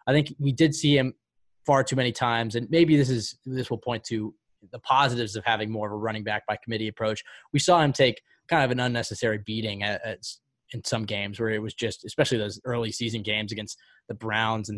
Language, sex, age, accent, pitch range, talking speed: English, male, 20-39, American, 110-145 Hz, 230 wpm